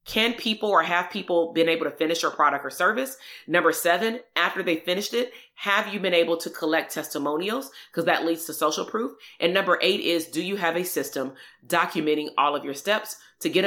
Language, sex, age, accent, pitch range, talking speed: English, female, 30-49, American, 165-215 Hz, 210 wpm